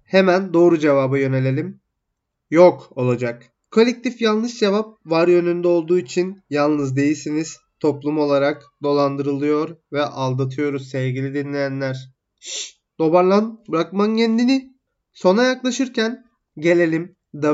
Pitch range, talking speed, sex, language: 140-175 Hz, 105 wpm, male, Turkish